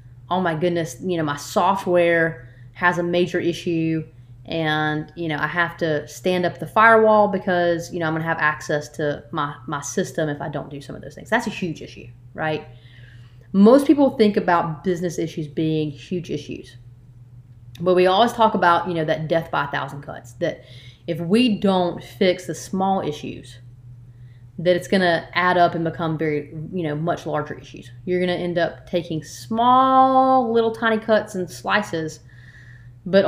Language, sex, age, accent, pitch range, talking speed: English, female, 30-49, American, 130-195 Hz, 180 wpm